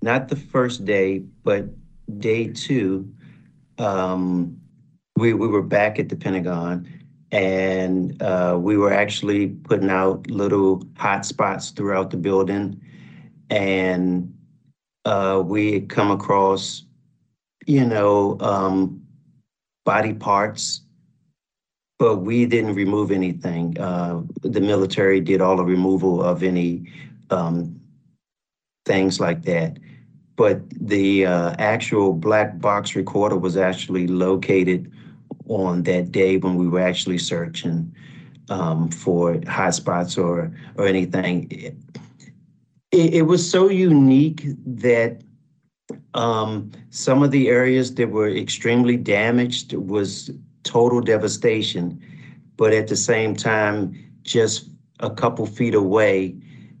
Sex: male